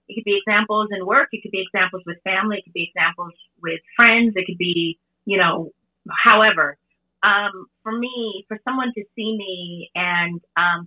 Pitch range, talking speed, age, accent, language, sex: 175-230 Hz, 190 wpm, 30-49, American, English, female